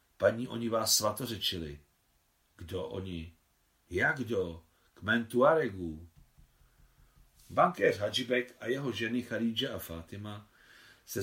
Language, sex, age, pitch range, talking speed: Czech, male, 50-69, 85-125 Hz, 100 wpm